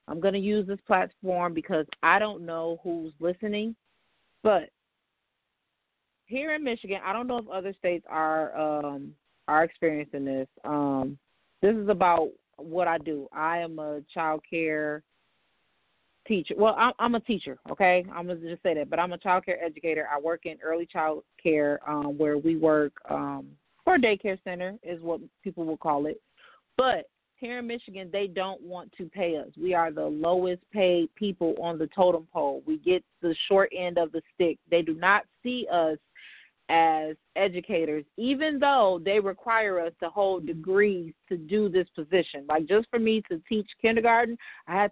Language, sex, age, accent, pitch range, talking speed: English, female, 30-49, American, 160-205 Hz, 180 wpm